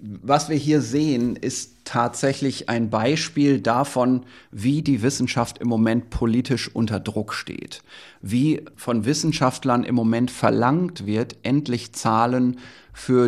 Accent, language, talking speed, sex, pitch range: German, German, 125 wpm, male, 115-140 Hz